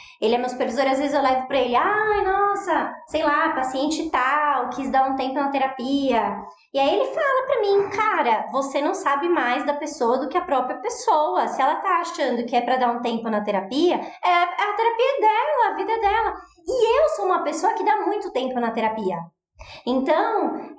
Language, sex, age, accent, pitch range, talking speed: Portuguese, male, 20-39, Brazilian, 235-315 Hz, 210 wpm